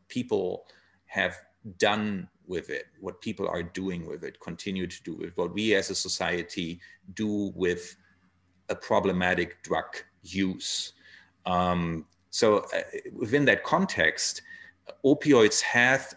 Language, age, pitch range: English, 40-59, 90-110 Hz